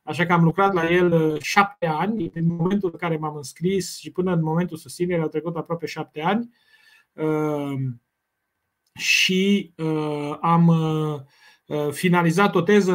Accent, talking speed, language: native, 140 wpm, Romanian